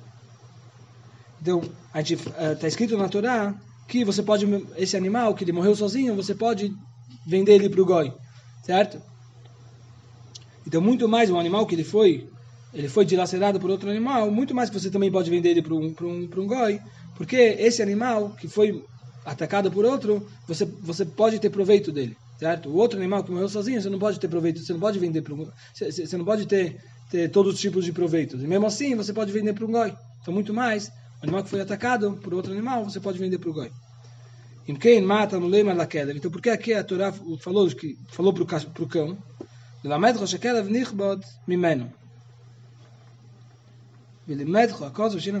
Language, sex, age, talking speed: Portuguese, male, 20-39, 175 wpm